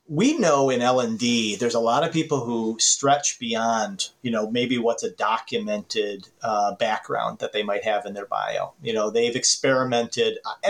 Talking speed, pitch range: 180 wpm, 115-170 Hz